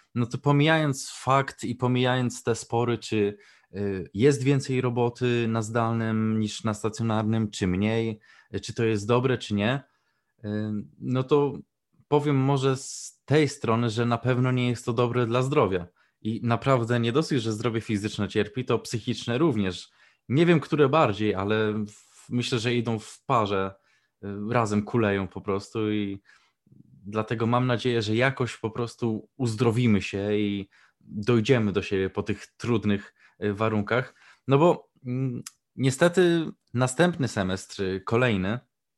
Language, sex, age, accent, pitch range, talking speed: Polish, male, 20-39, native, 105-130 Hz, 140 wpm